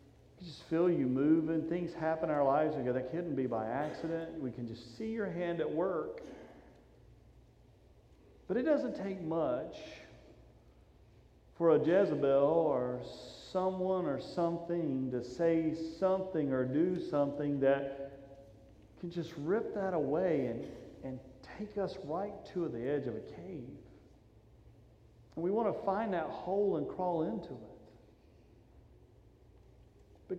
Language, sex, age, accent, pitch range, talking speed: English, male, 40-59, American, 135-185 Hz, 135 wpm